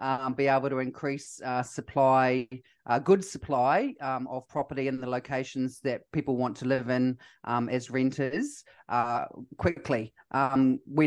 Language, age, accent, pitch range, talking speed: English, 30-49, Australian, 125-140 Hz, 155 wpm